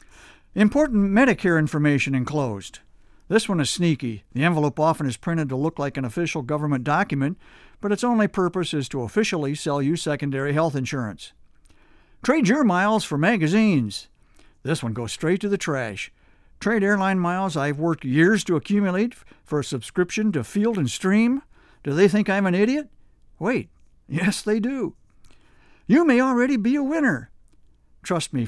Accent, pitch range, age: American, 140-210 Hz, 60-79